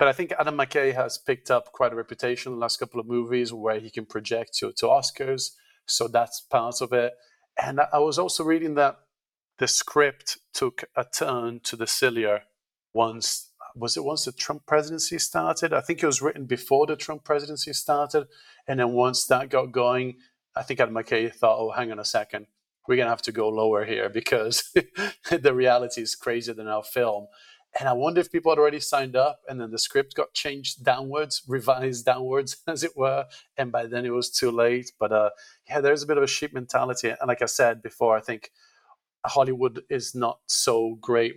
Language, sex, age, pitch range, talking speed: English, male, 40-59, 110-145 Hz, 205 wpm